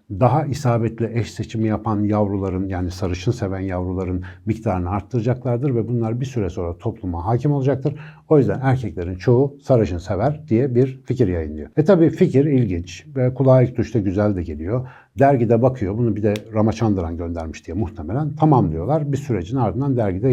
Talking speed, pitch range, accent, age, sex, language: 165 wpm, 95-135 Hz, native, 60-79, male, Turkish